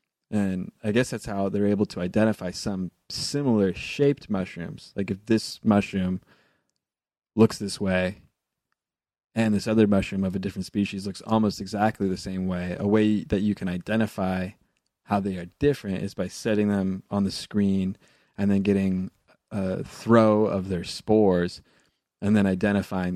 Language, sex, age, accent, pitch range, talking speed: English, male, 20-39, American, 95-105 Hz, 160 wpm